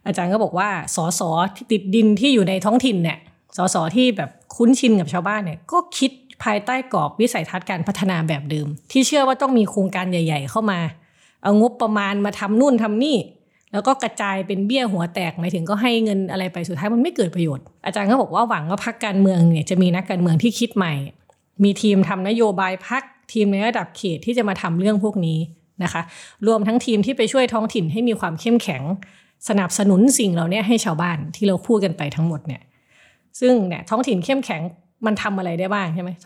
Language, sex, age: Thai, female, 20-39